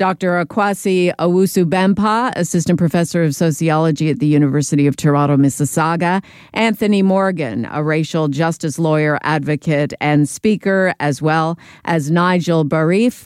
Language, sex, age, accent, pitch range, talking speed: English, female, 50-69, American, 150-180 Hz, 120 wpm